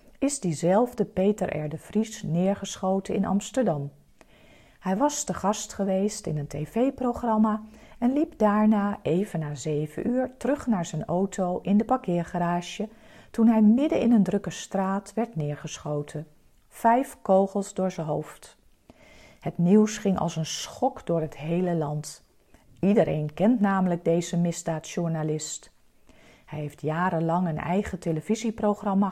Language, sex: Dutch, female